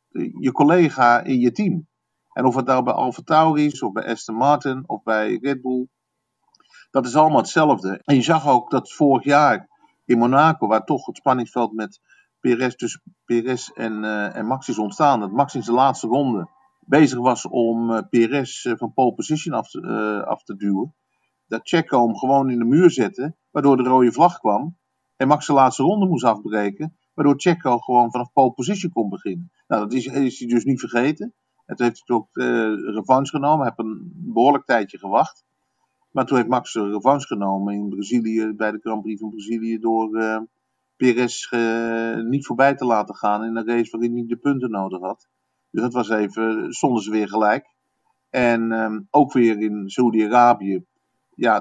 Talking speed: 195 wpm